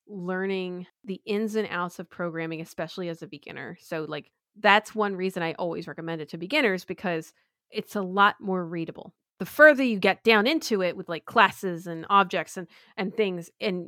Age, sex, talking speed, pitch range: 30-49, female, 190 wpm, 170-215 Hz